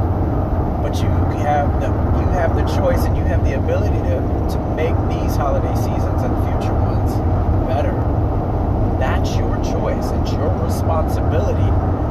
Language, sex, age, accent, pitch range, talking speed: English, male, 30-49, American, 95-105 Hz, 135 wpm